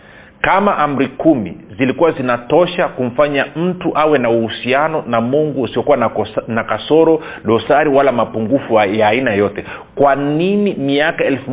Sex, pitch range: male, 120-160 Hz